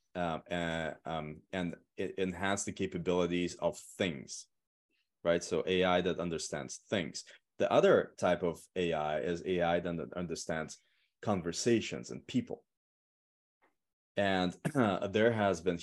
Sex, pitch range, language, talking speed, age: male, 85-100 Hz, English, 120 wpm, 20-39